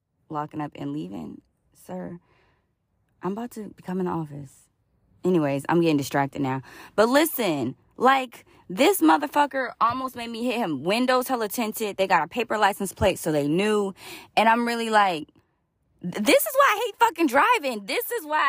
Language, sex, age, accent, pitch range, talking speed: English, female, 20-39, American, 175-250 Hz, 170 wpm